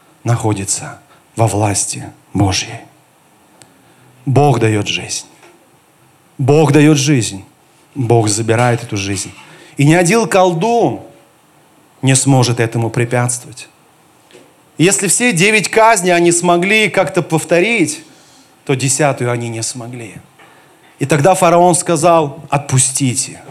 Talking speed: 100 wpm